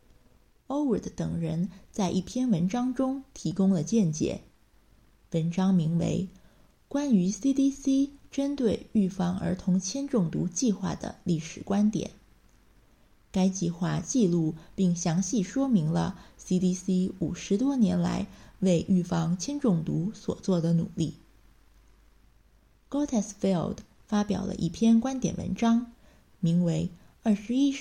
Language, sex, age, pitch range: English, female, 20-39, 175-230 Hz